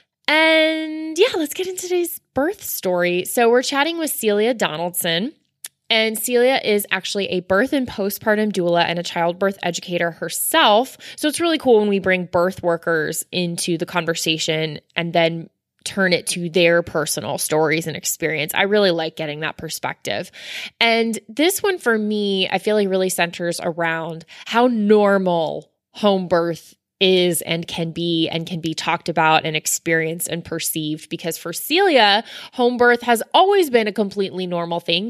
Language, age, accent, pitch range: English, 20-39, American, 170-225 Hz